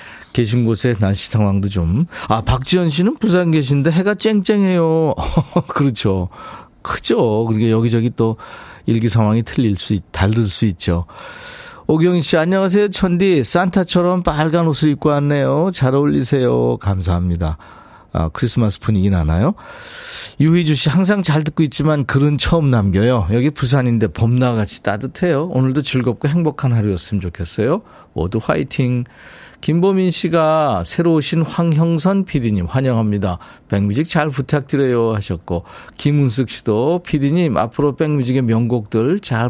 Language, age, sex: Korean, 40-59, male